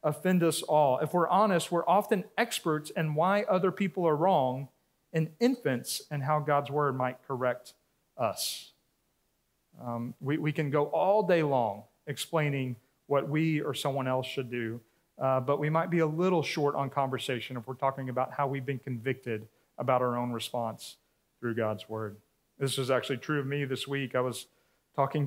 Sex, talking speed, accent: male, 180 wpm, American